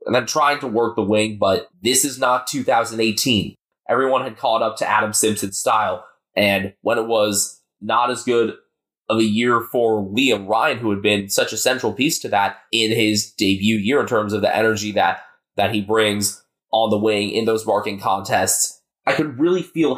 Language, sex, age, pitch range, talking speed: English, male, 20-39, 105-135 Hz, 200 wpm